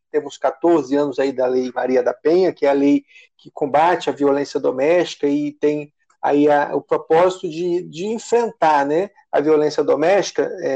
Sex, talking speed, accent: male, 155 wpm, Brazilian